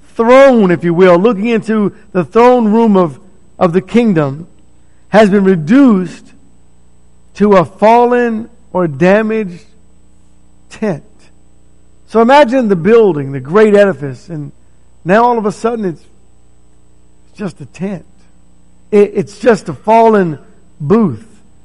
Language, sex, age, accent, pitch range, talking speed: English, male, 50-69, American, 135-225 Hz, 120 wpm